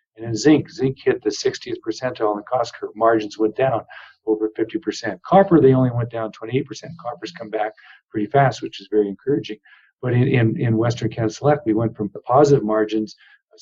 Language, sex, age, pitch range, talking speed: English, male, 50-69, 120-160 Hz, 205 wpm